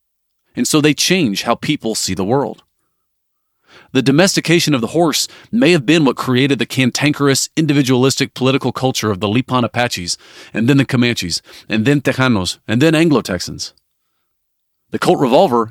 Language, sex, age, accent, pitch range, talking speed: English, male, 40-59, American, 110-145 Hz, 155 wpm